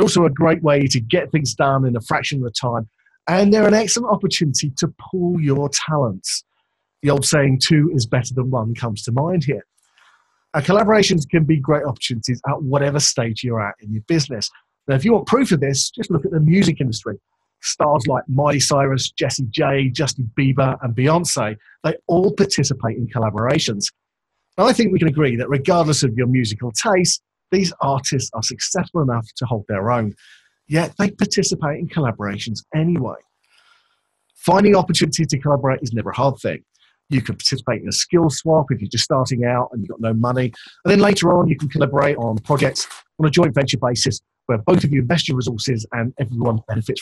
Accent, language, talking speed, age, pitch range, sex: British, English, 195 wpm, 40-59, 125-165 Hz, male